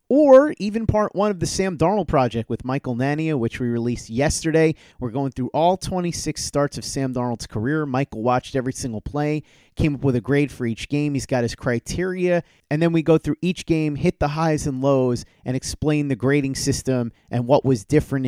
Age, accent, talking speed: 30-49, American, 210 wpm